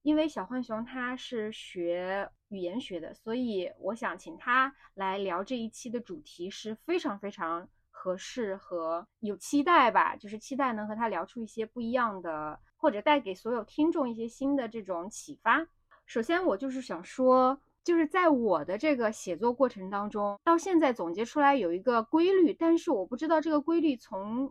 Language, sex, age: Chinese, female, 20-39